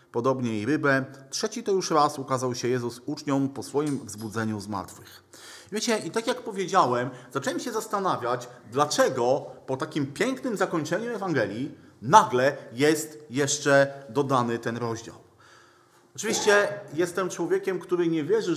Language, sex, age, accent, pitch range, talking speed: Polish, male, 40-59, native, 135-185 Hz, 135 wpm